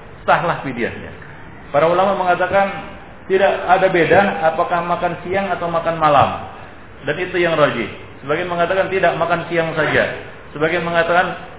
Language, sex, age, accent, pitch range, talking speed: Indonesian, male, 40-59, native, 125-170 Hz, 135 wpm